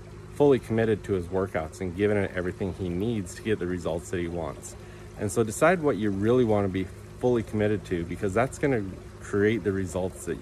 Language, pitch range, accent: English, 95-110 Hz, American